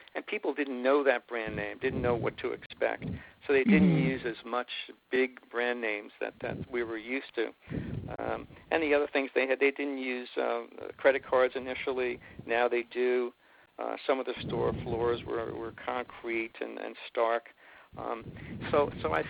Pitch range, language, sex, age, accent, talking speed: 115-140 Hz, English, male, 50-69, American, 185 wpm